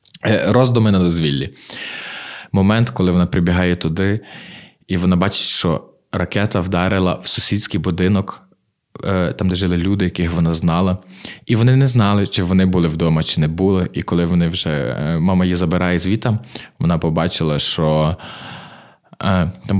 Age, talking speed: 20-39, 140 wpm